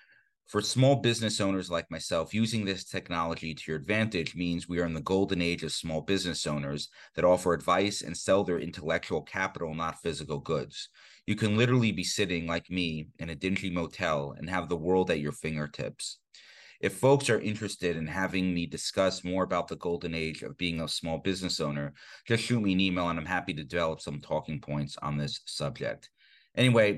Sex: male